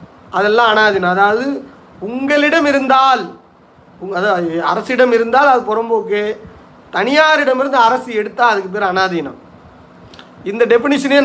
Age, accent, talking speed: 30-49, native, 100 wpm